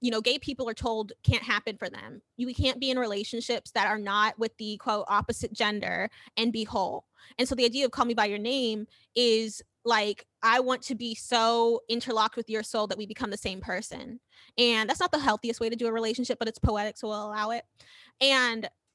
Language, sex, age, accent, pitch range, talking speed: English, female, 20-39, American, 220-250 Hz, 225 wpm